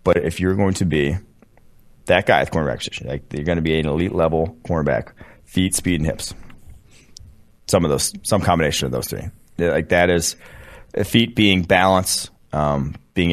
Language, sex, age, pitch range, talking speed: English, male, 30-49, 80-95 Hz, 170 wpm